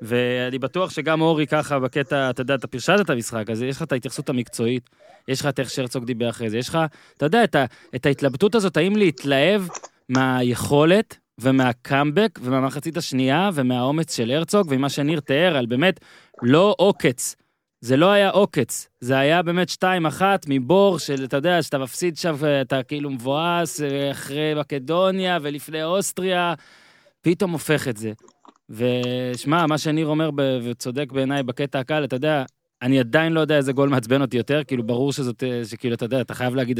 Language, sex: Hebrew, male